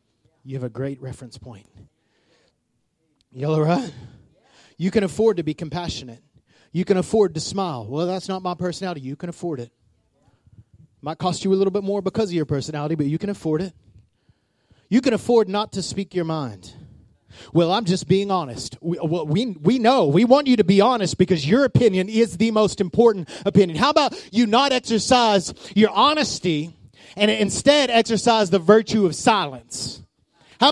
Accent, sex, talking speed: American, male, 180 wpm